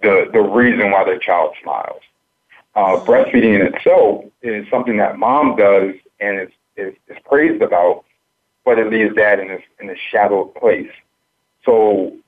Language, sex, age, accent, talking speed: English, male, 50-69, American, 165 wpm